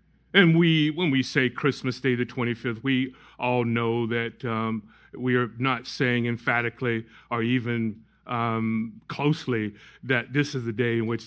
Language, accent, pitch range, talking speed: English, American, 125-160 Hz, 160 wpm